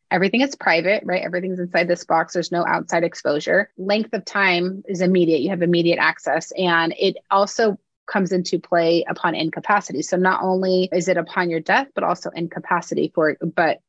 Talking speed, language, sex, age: 185 wpm, English, female, 30-49